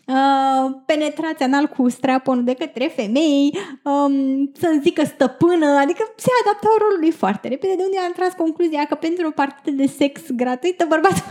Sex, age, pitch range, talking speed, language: female, 20-39, 260-340 Hz, 170 wpm, Romanian